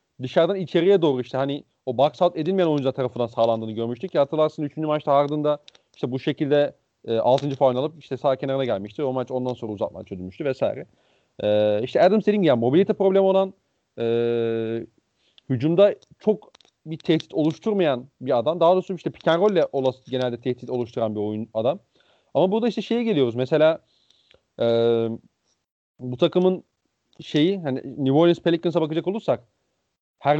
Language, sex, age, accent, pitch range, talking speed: Turkish, male, 40-59, native, 130-190 Hz, 160 wpm